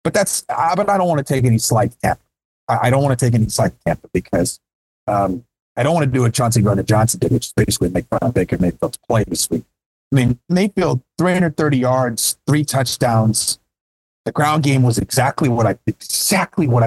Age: 40-59